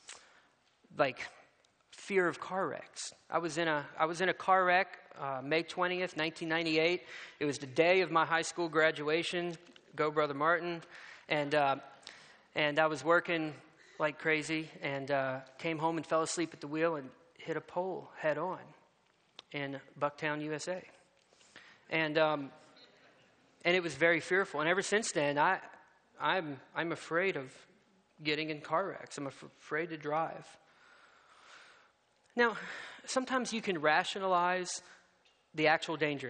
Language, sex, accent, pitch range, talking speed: English, male, American, 155-225 Hz, 150 wpm